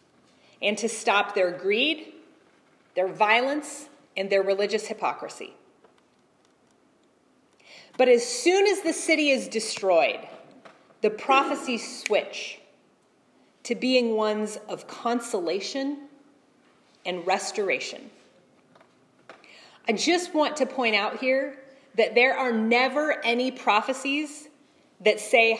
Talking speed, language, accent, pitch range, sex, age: 105 wpm, English, American, 215-290 Hz, female, 30-49